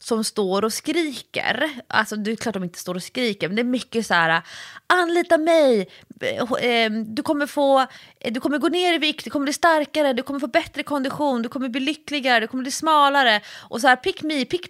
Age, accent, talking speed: 30-49, native, 215 wpm